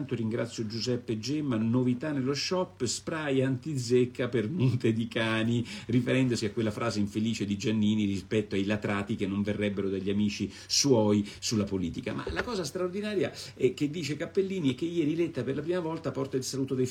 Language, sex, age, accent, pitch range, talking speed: Italian, male, 50-69, native, 105-135 Hz, 180 wpm